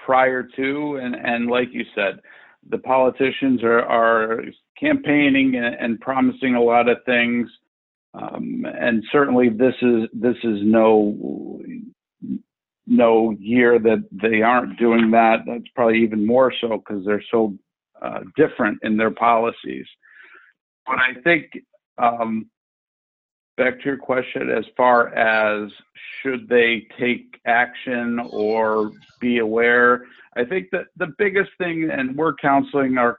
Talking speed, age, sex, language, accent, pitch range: 135 wpm, 50-69, male, English, American, 115-140 Hz